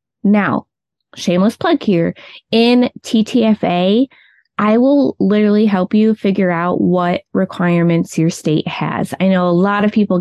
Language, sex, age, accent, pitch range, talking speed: English, female, 20-39, American, 175-210 Hz, 140 wpm